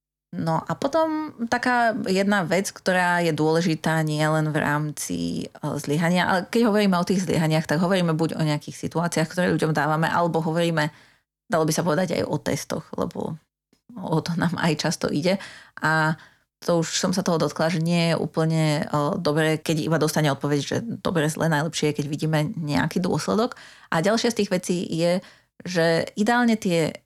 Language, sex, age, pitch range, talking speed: Slovak, female, 30-49, 155-170 Hz, 175 wpm